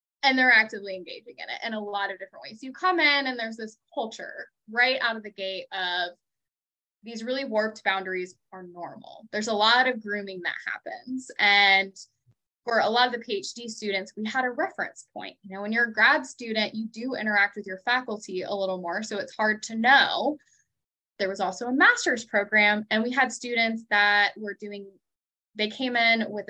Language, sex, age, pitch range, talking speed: English, female, 10-29, 195-245 Hz, 200 wpm